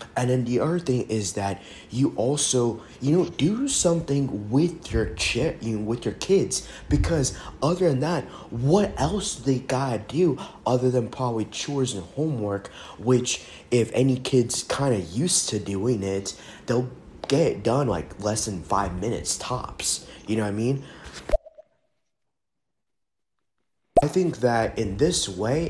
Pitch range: 100-130 Hz